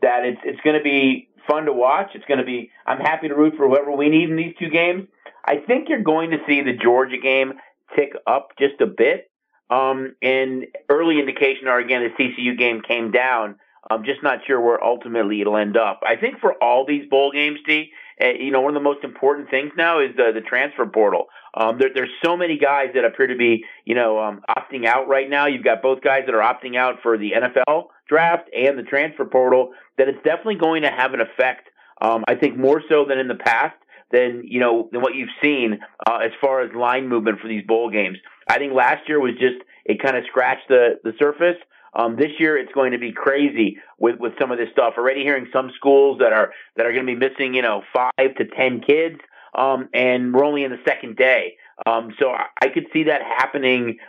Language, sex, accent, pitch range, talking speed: English, male, American, 125-150 Hz, 230 wpm